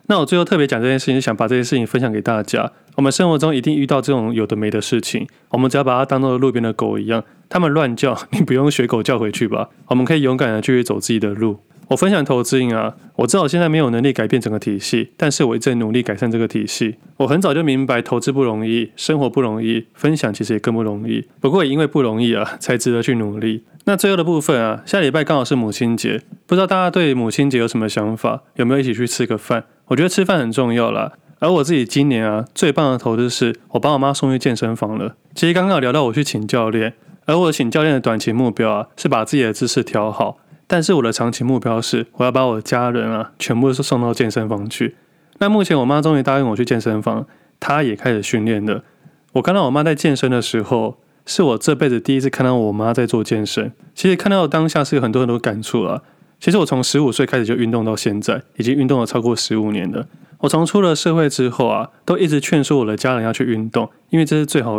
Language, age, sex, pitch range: Chinese, 20-39, male, 115-145 Hz